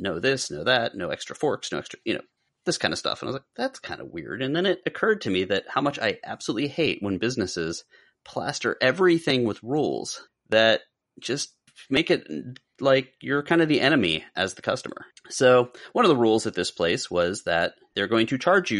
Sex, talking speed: male, 220 wpm